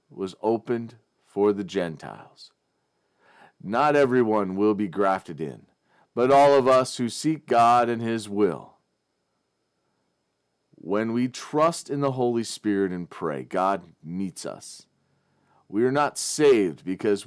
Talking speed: 130 wpm